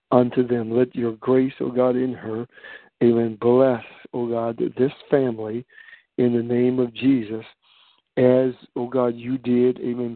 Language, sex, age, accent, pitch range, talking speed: English, male, 60-79, American, 120-130 Hz, 170 wpm